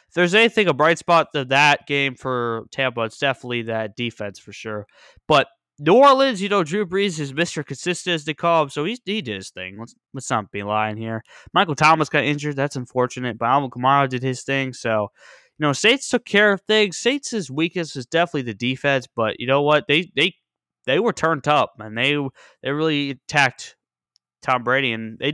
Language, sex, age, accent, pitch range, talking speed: English, male, 20-39, American, 120-175 Hz, 210 wpm